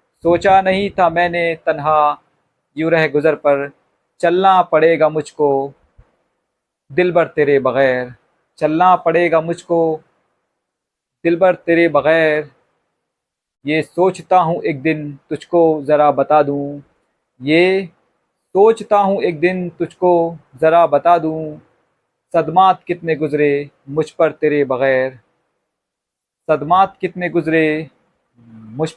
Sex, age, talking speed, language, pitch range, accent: male, 40-59, 110 wpm, Hindi, 145-175 Hz, native